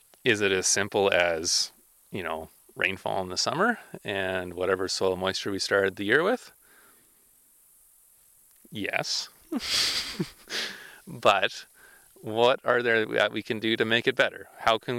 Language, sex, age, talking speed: English, male, 30-49, 140 wpm